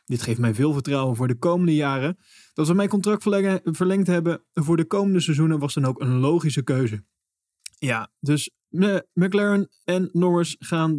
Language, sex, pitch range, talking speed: Dutch, male, 125-165 Hz, 170 wpm